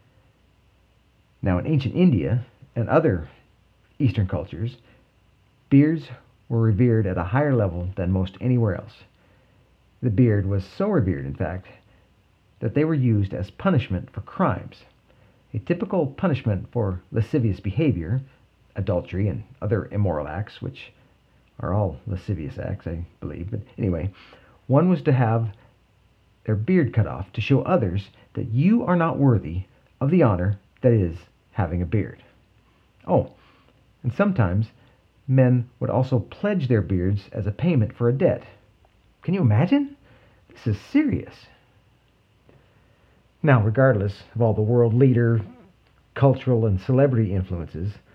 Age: 50-69